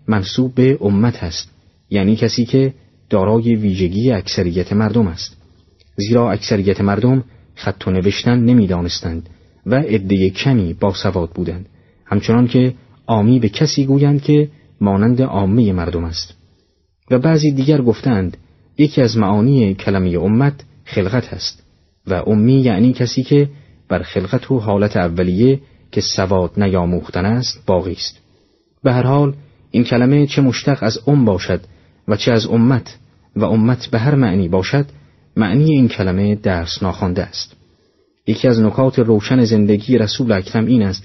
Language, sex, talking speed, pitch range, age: Persian, male, 145 wpm, 95-125 Hz, 30-49